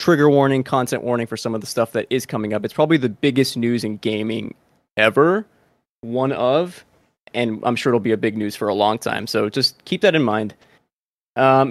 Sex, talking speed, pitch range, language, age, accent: male, 215 wpm, 110-140 Hz, English, 20-39, American